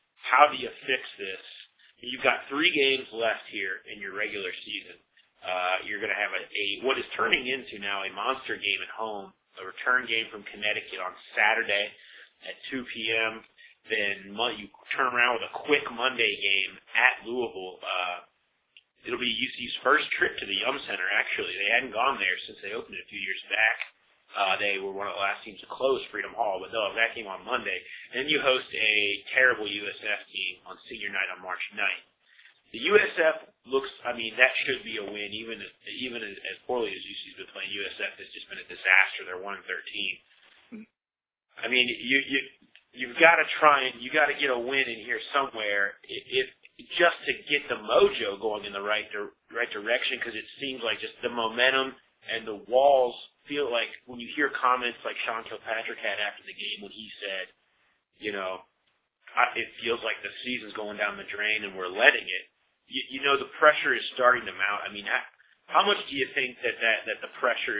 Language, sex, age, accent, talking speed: English, male, 30-49, American, 205 wpm